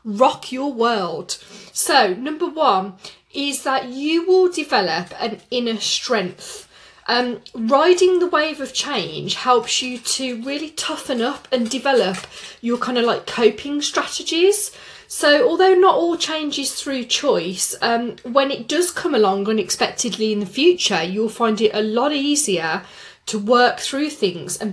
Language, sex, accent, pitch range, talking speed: English, female, British, 210-280 Hz, 155 wpm